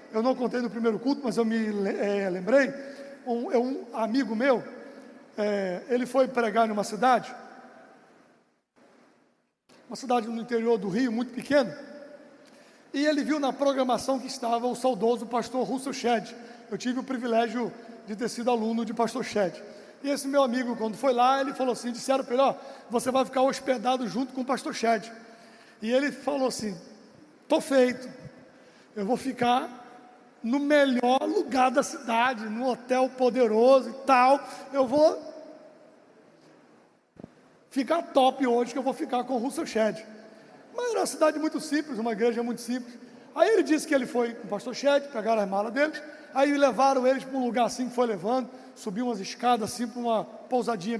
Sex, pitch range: male, 235-275 Hz